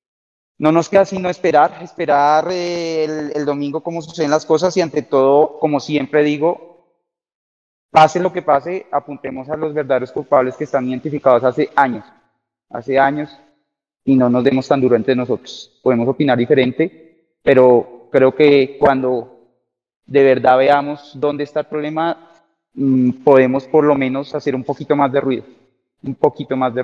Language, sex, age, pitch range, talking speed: Spanish, male, 30-49, 130-155 Hz, 160 wpm